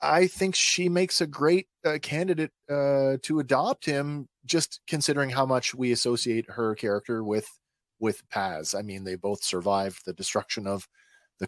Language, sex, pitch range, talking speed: English, male, 115-170 Hz, 165 wpm